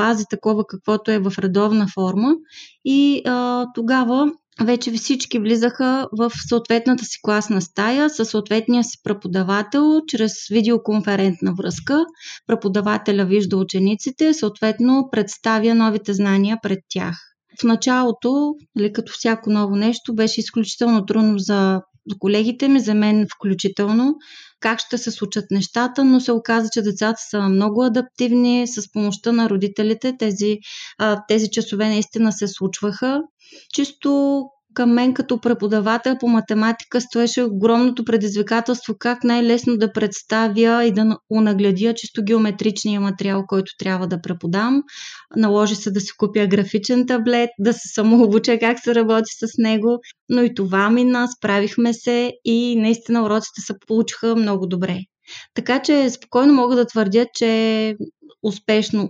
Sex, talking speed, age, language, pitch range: female, 135 wpm, 30-49, Bulgarian, 205-240 Hz